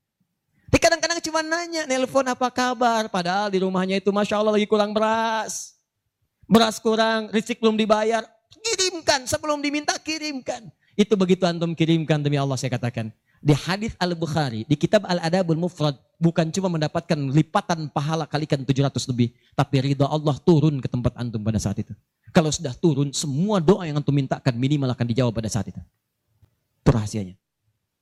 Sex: male